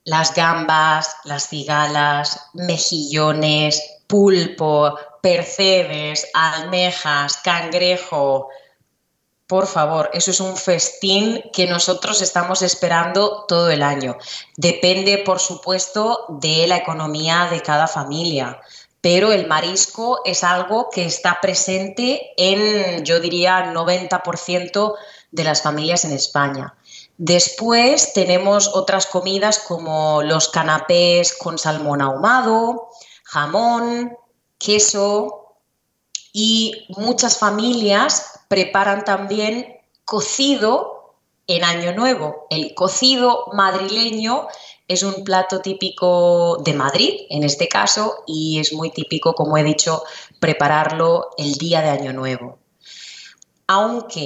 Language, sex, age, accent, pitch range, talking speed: English, female, 20-39, Spanish, 155-200 Hz, 105 wpm